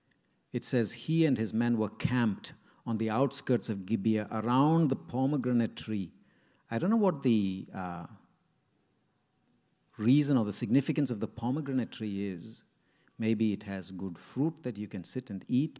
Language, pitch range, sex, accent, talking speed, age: English, 110-150 Hz, male, Indian, 165 wpm, 50-69